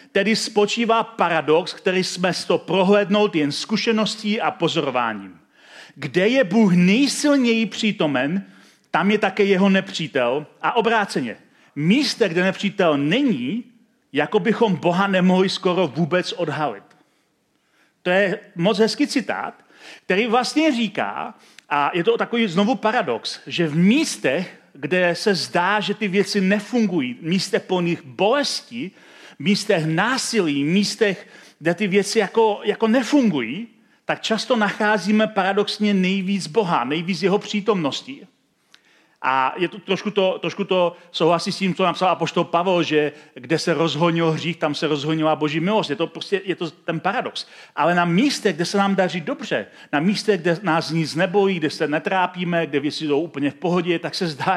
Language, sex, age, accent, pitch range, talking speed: Czech, male, 40-59, native, 170-215 Hz, 150 wpm